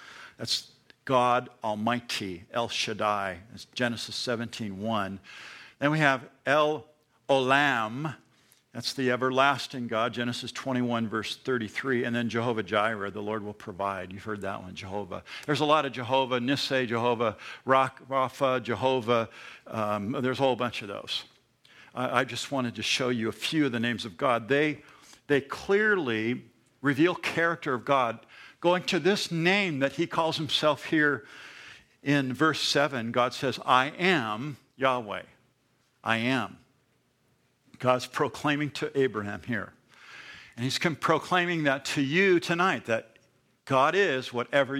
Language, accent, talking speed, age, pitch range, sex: English, American, 145 wpm, 60-79, 115-145 Hz, male